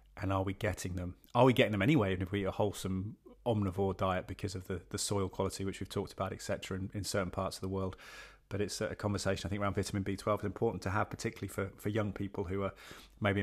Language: English